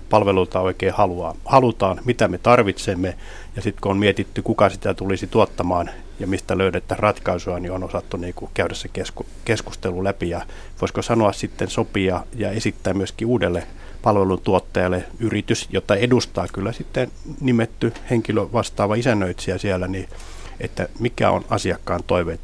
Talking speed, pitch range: 145 wpm, 90-110 Hz